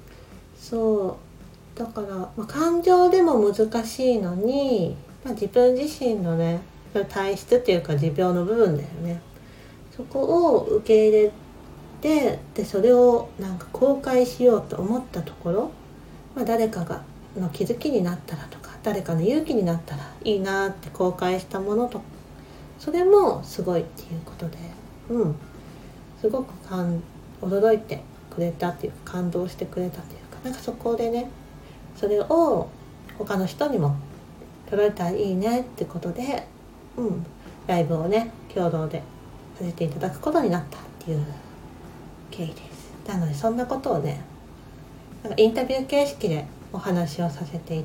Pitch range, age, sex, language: 170-235 Hz, 40-59, female, Japanese